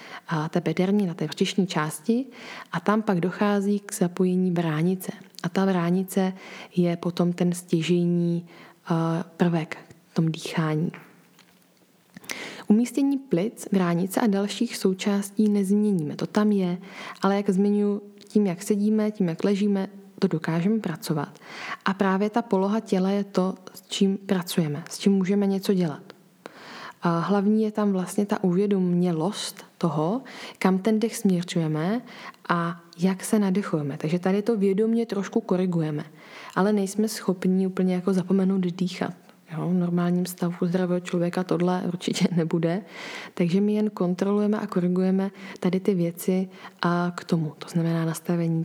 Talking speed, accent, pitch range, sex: 140 wpm, native, 175-205 Hz, female